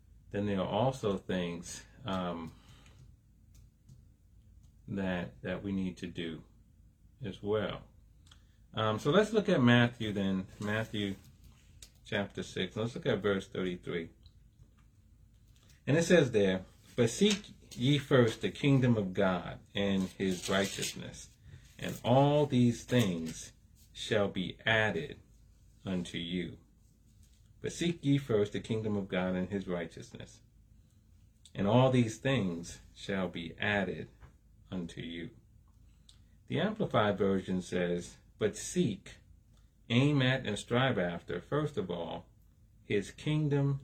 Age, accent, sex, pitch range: 30-49, American, male, 90-120 Hz